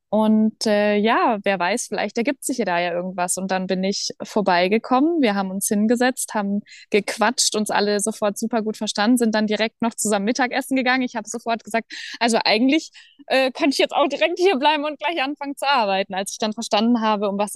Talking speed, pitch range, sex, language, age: 210 wpm, 210-255 Hz, female, German, 20-39